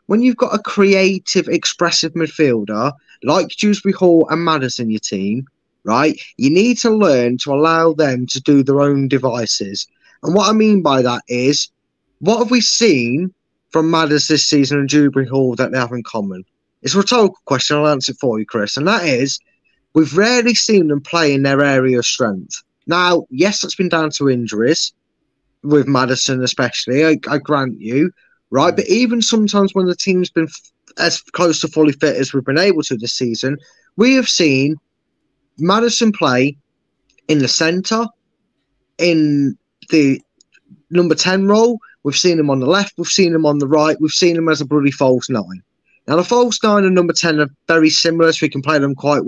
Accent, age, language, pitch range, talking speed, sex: British, 20-39, English, 135-185 Hz, 190 wpm, male